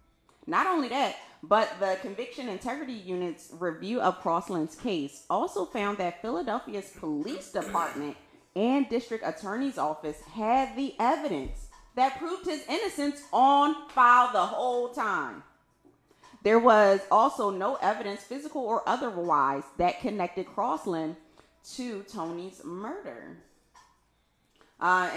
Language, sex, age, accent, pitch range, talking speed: English, female, 30-49, American, 165-245 Hz, 115 wpm